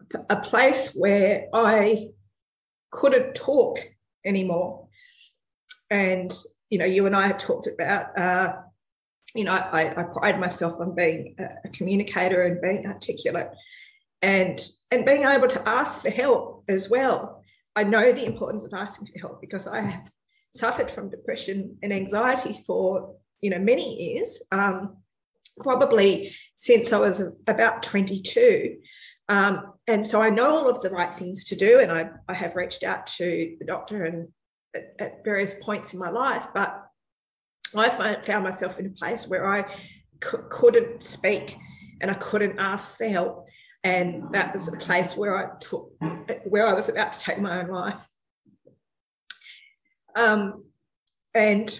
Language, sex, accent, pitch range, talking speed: English, female, Australian, 190-250 Hz, 155 wpm